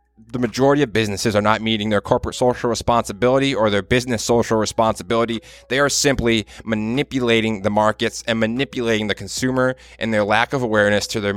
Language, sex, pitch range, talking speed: English, male, 105-120 Hz, 175 wpm